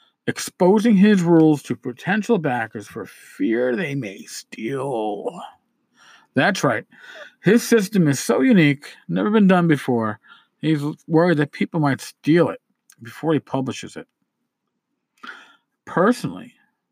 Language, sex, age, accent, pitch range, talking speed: English, male, 50-69, American, 130-195 Hz, 120 wpm